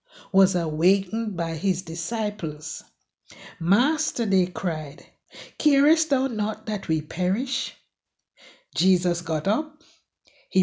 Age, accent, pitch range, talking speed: 60-79, Nigerian, 175-260 Hz, 100 wpm